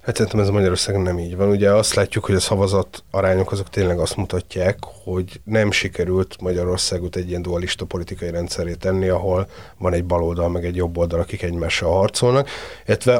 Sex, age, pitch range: male, 30-49, 90-105 Hz